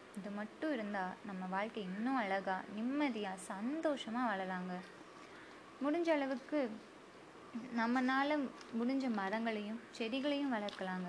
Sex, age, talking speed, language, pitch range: female, 20-39, 90 wpm, Tamil, 200-260 Hz